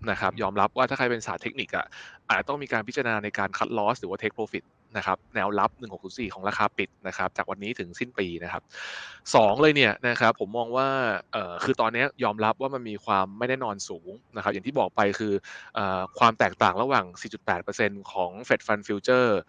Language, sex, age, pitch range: Thai, male, 20-39, 100-125 Hz